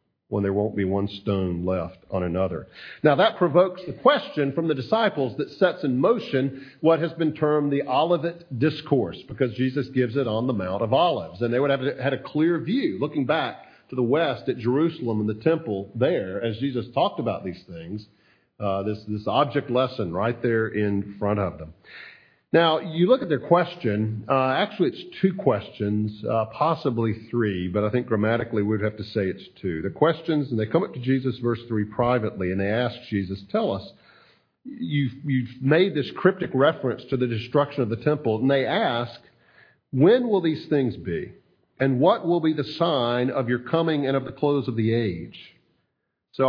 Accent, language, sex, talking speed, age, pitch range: American, English, male, 195 wpm, 50-69, 110-155 Hz